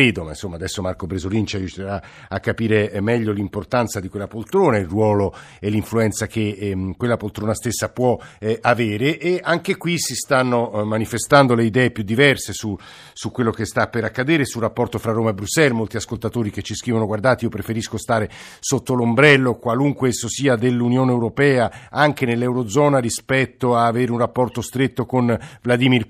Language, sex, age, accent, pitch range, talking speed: Italian, male, 50-69, native, 115-140 Hz, 170 wpm